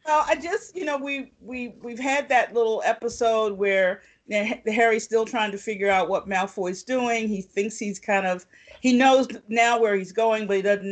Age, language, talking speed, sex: 50-69, English, 215 wpm, female